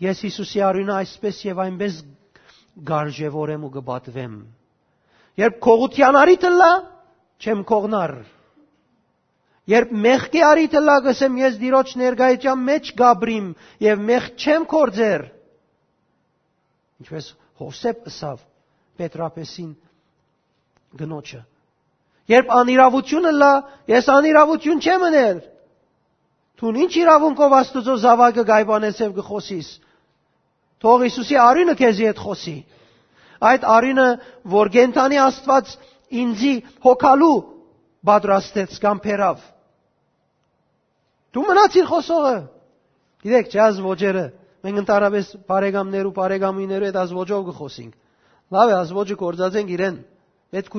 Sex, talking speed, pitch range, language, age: male, 45 wpm, 185-260 Hz, English, 50-69